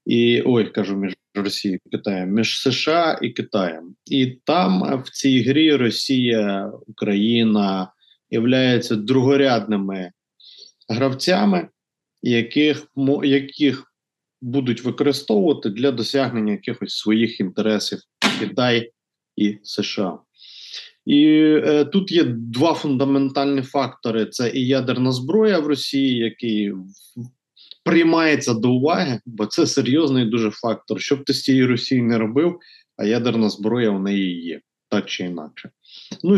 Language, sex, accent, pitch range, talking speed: Ukrainian, male, native, 110-145 Hz, 120 wpm